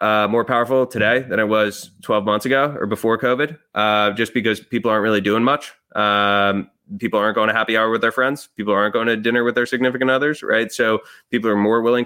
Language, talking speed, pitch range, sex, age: English, 230 wpm, 105-120 Hz, male, 20-39